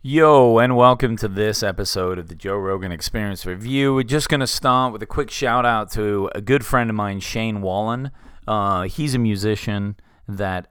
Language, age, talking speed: English, 30-49, 190 wpm